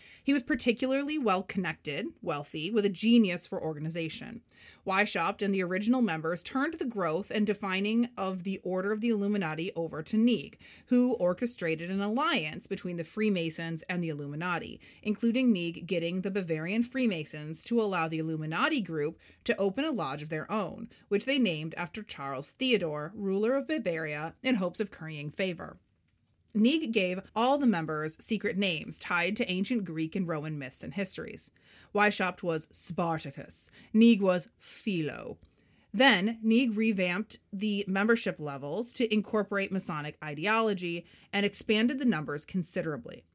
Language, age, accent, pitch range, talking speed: English, 30-49, American, 170-235 Hz, 150 wpm